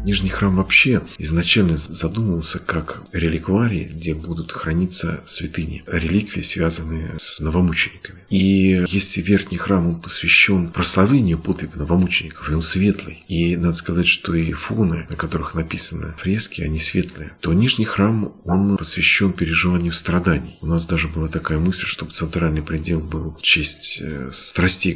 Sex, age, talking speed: male, 50-69, 140 wpm